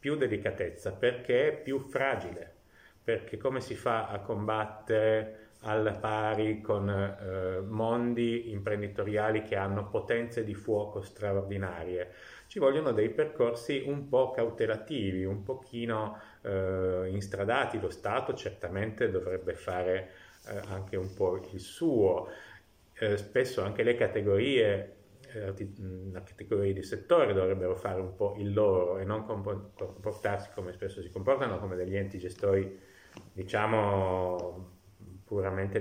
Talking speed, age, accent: 125 wpm, 30-49, native